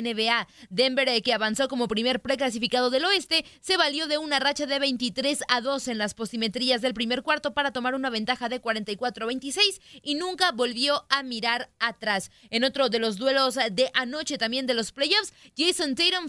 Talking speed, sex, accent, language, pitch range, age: 190 wpm, female, Mexican, Spanish, 240-280 Hz, 20-39